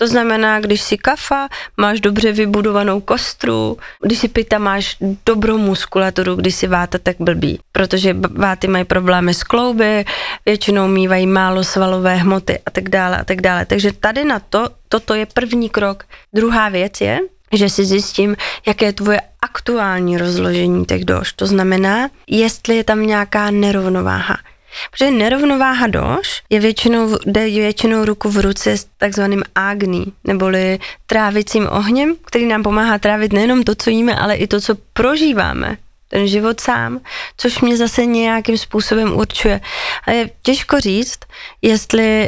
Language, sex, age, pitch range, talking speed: Slovak, female, 20-39, 195-225 Hz, 145 wpm